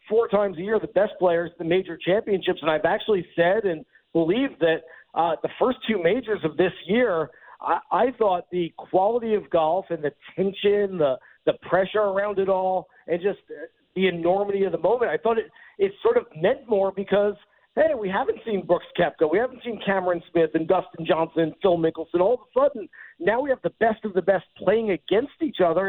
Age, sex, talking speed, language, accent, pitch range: 50-69, male, 210 wpm, English, American, 180-220 Hz